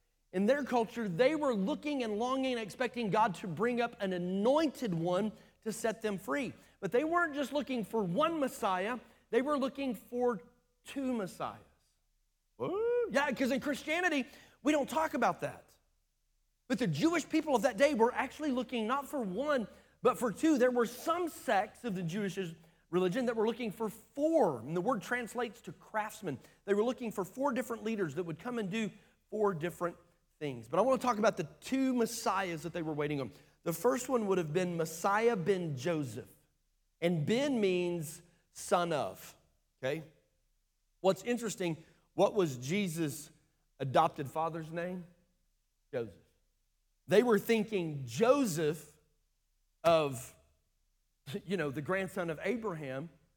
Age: 40-59